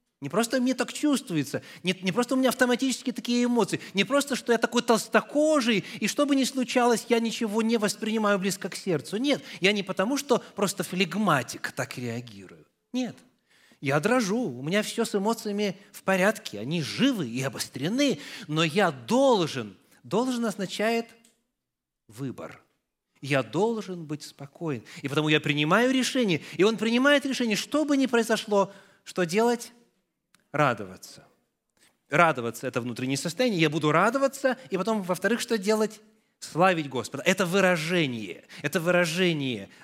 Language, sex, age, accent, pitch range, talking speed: Russian, male, 30-49, native, 145-230 Hz, 150 wpm